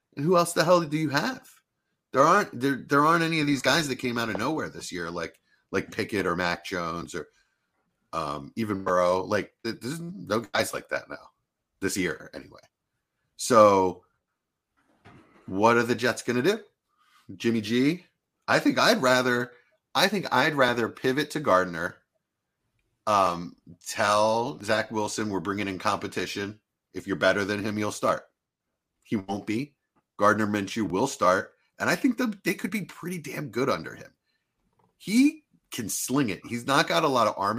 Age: 30-49